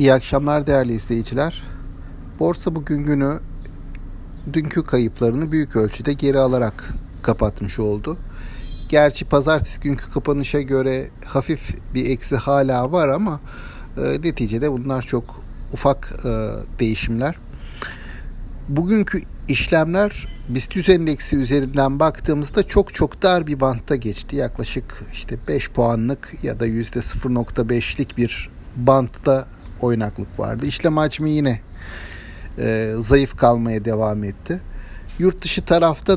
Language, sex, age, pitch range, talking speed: Turkish, male, 60-79, 110-150 Hz, 115 wpm